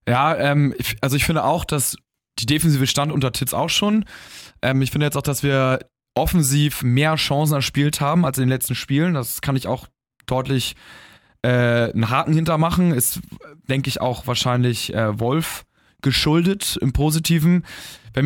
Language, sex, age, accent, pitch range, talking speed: German, male, 20-39, German, 135-165 Hz, 170 wpm